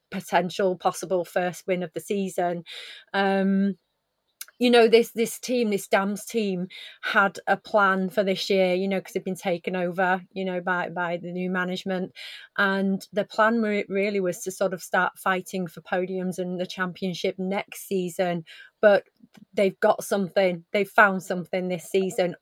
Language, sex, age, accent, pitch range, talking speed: English, female, 30-49, British, 185-210 Hz, 165 wpm